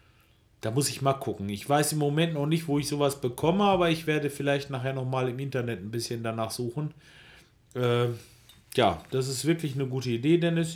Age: 40-59